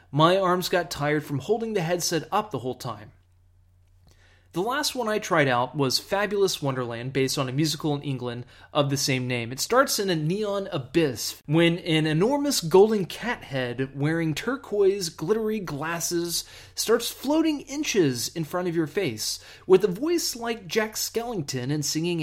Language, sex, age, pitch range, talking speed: English, male, 30-49, 130-200 Hz, 170 wpm